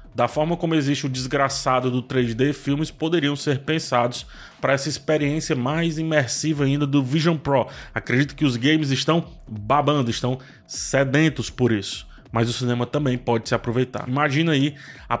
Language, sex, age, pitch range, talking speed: Portuguese, male, 20-39, 125-150 Hz, 160 wpm